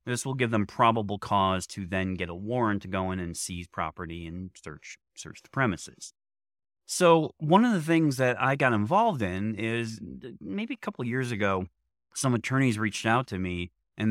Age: 30-49